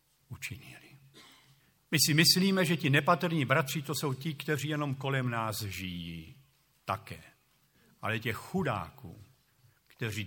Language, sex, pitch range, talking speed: Slovak, male, 105-140 Hz, 115 wpm